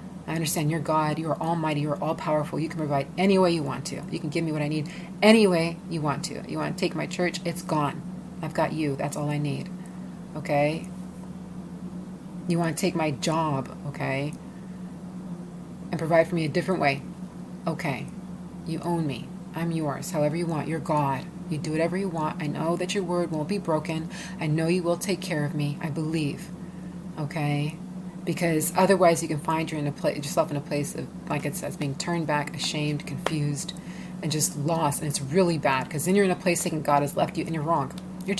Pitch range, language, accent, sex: 155-185 Hz, English, American, female